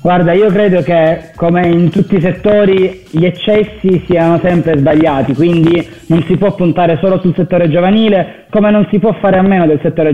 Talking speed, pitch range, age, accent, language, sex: 190 wpm, 155-180 Hz, 20-39, native, Italian, male